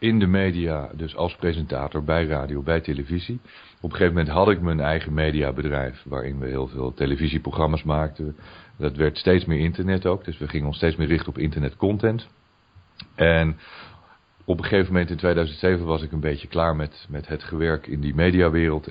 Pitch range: 75-95 Hz